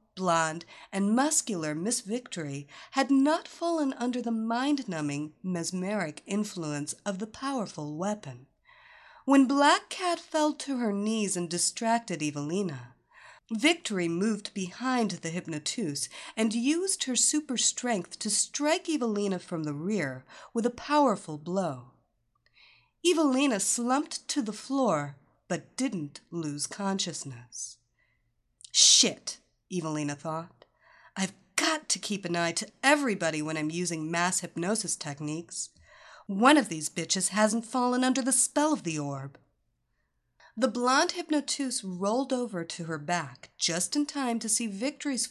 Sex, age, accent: female, 50-69, American